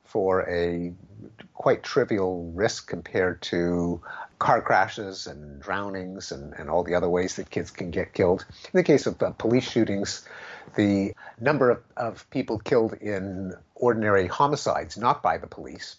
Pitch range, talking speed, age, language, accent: 90-115 Hz, 160 wpm, 50-69, English, American